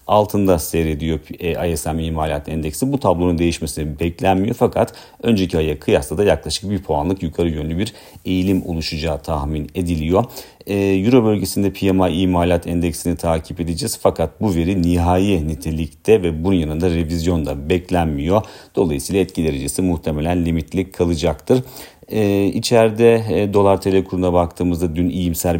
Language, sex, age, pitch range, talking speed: Turkish, male, 40-59, 80-95 Hz, 135 wpm